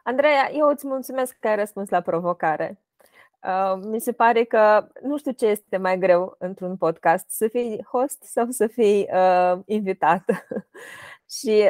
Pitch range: 190-245 Hz